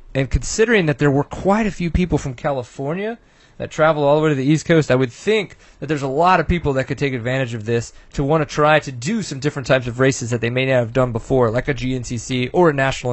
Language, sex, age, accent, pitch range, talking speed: English, male, 30-49, American, 125-155 Hz, 270 wpm